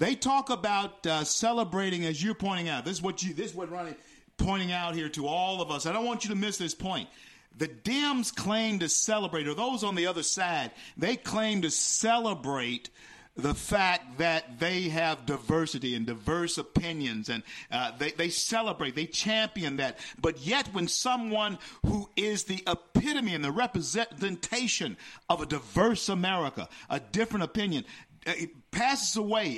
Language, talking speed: English, 170 wpm